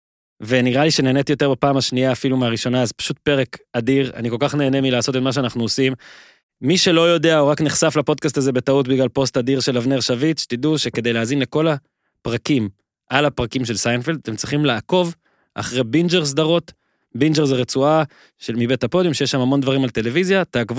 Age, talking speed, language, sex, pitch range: 20-39, 165 wpm, Hebrew, male, 120-155 Hz